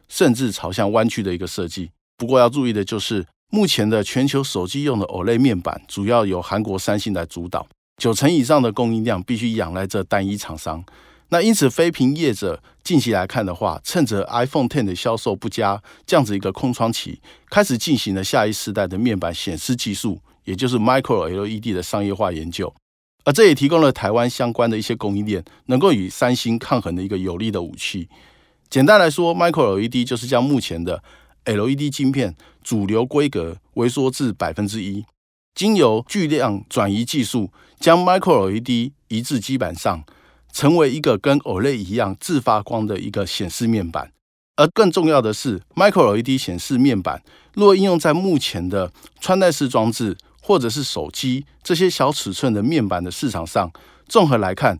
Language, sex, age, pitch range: Chinese, male, 50-69, 100-130 Hz